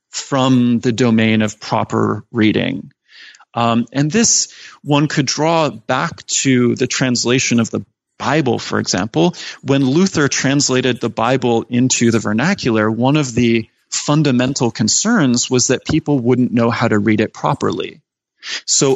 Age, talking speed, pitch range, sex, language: 30-49, 140 wpm, 115-140 Hz, male, English